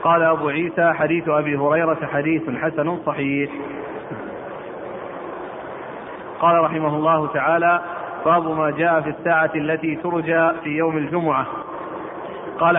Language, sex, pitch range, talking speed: Arabic, male, 155-170 Hz, 115 wpm